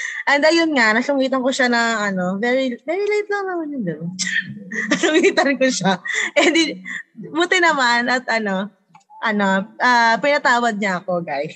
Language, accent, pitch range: English, Filipino, 190-275 Hz